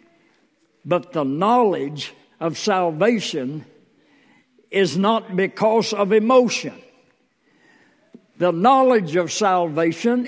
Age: 60-79